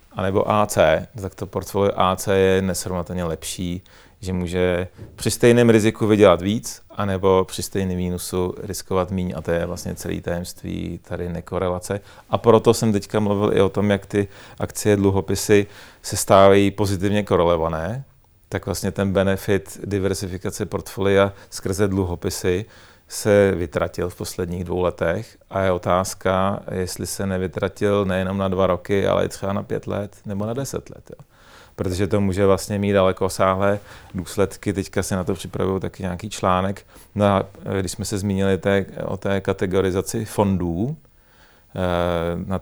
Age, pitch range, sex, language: 40-59, 95-100 Hz, male, Czech